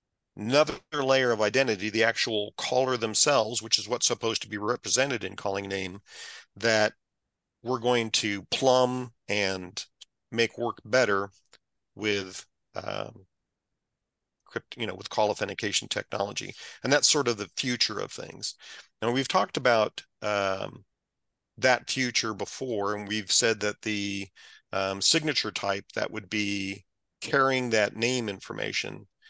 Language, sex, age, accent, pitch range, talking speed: English, male, 40-59, American, 100-120 Hz, 135 wpm